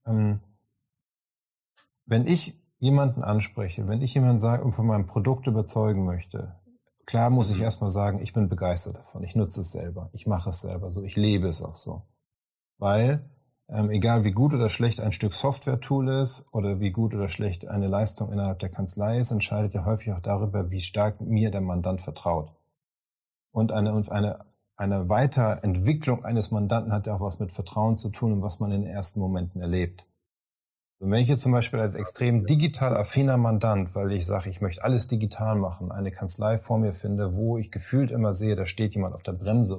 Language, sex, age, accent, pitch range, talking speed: German, male, 40-59, German, 95-115 Hz, 190 wpm